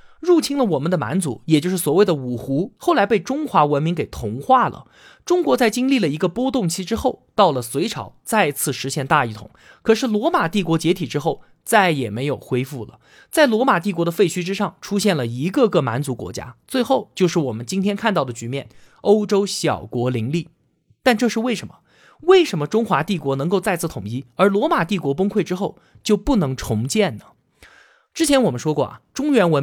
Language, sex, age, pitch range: Chinese, male, 20-39, 140-225 Hz